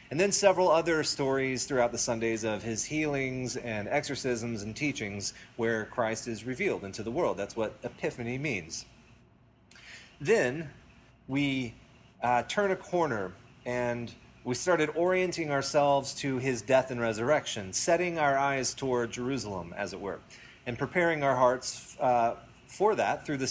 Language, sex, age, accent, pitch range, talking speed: English, male, 30-49, American, 115-145 Hz, 150 wpm